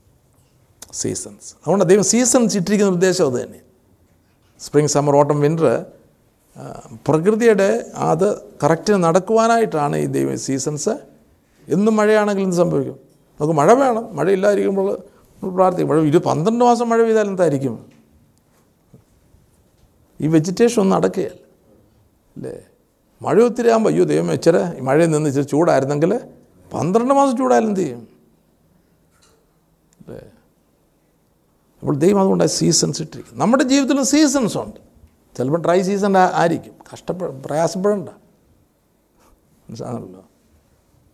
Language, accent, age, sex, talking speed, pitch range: Malayalam, native, 50-69, male, 100 wpm, 150-225 Hz